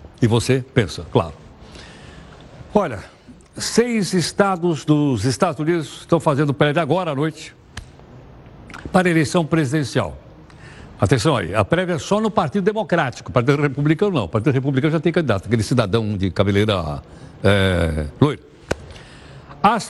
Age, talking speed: 60-79, 130 wpm